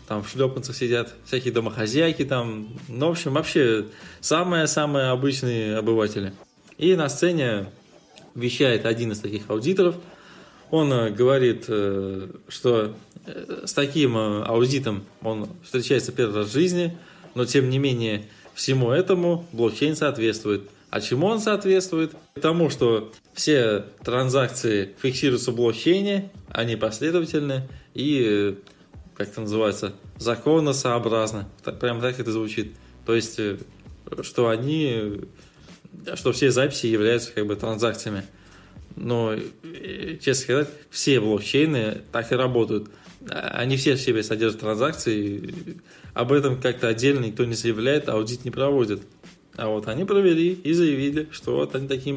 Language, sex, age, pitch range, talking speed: Russian, male, 20-39, 110-145 Hz, 125 wpm